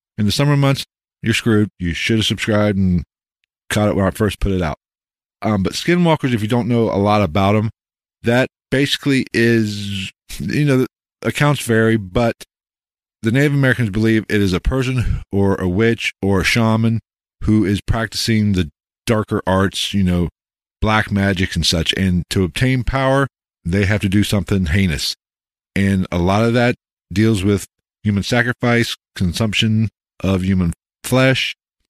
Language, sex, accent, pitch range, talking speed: English, male, American, 95-115 Hz, 165 wpm